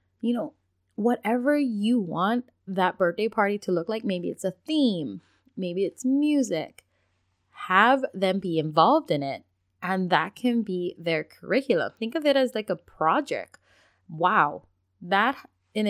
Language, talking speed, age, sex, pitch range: English, 150 wpm, 20-39, female, 170-235 Hz